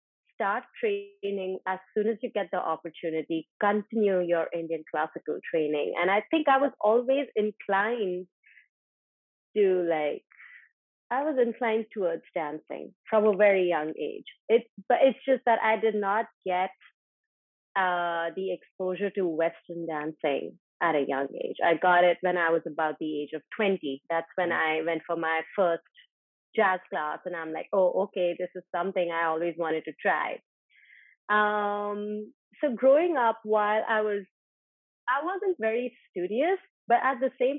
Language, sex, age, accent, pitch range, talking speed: English, female, 30-49, Indian, 170-230 Hz, 160 wpm